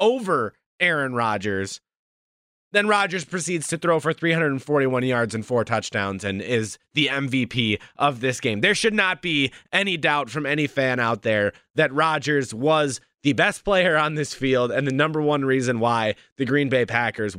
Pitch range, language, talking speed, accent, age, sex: 145-190 Hz, English, 175 wpm, American, 30-49, male